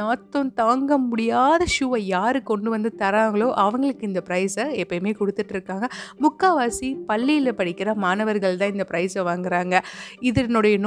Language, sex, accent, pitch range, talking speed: Tamil, female, native, 195-250 Hz, 75 wpm